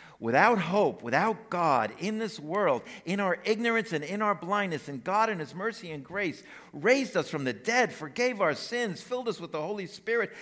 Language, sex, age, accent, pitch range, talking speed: English, male, 50-69, American, 150-225 Hz, 200 wpm